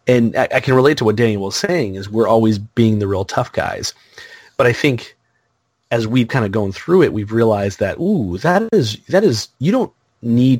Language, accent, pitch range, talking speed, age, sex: English, American, 100-130 Hz, 215 wpm, 30-49, male